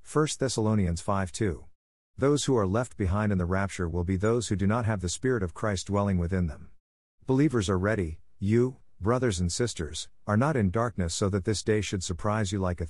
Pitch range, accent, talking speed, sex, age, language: 90-115 Hz, American, 210 wpm, male, 50-69, English